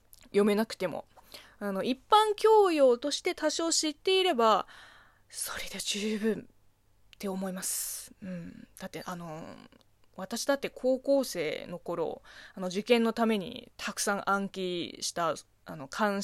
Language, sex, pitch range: Japanese, female, 200-320 Hz